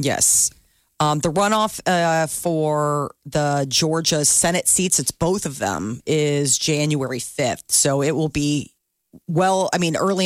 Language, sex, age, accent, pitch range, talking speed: English, female, 40-59, American, 150-190 Hz, 145 wpm